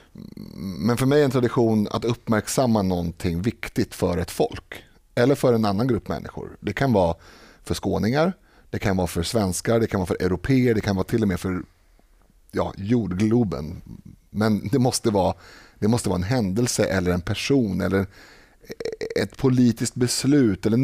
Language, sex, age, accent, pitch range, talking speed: Swedish, male, 30-49, native, 90-115 Hz, 165 wpm